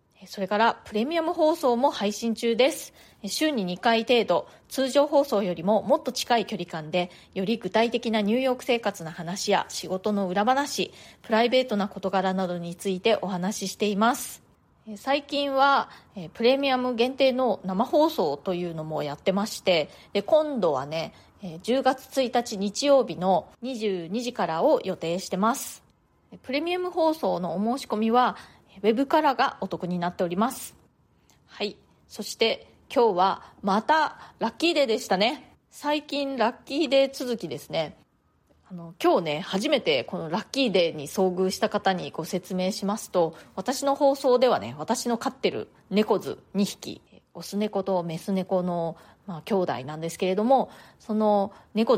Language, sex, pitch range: Japanese, female, 185-255 Hz